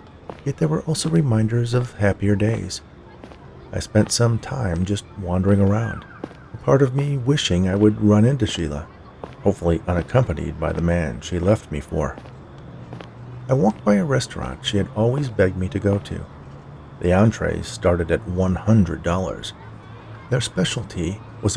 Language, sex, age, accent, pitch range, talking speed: English, male, 50-69, American, 85-120 Hz, 155 wpm